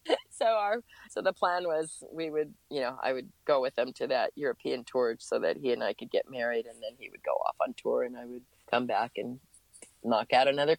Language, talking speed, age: English, 245 wpm, 30-49